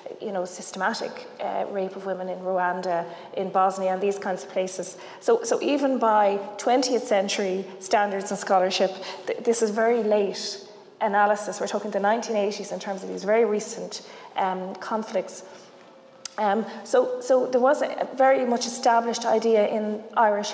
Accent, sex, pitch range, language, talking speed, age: Irish, female, 195-230 Hz, English, 160 wpm, 30-49